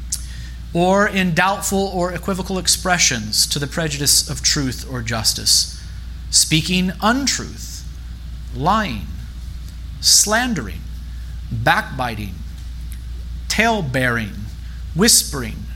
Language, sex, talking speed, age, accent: English, male, 75 wpm, 40-59, American